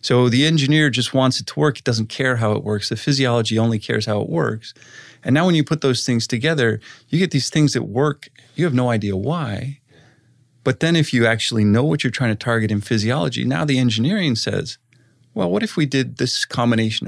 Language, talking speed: English, 225 wpm